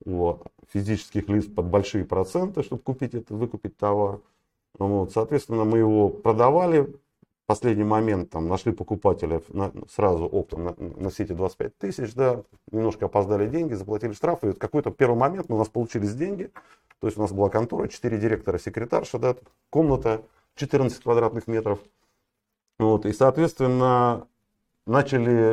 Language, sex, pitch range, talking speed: Russian, male, 95-120 Hz, 125 wpm